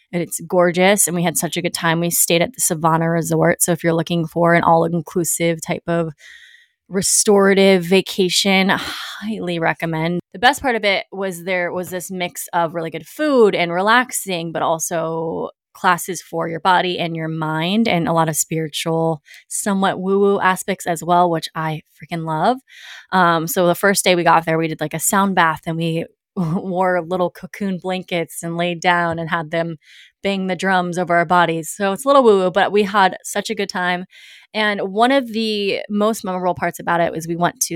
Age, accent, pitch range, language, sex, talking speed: 20-39, American, 165-190 Hz, English, female, 200 wpm